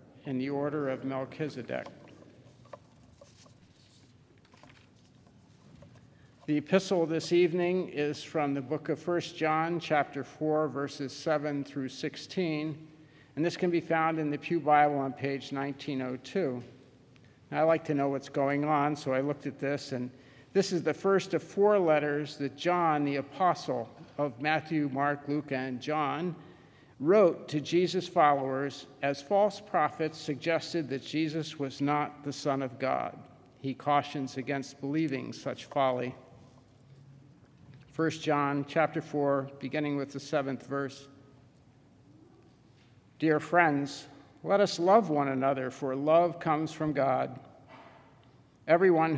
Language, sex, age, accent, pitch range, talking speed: English, male, 50-69, American, 135-155 Hz, 130 wpm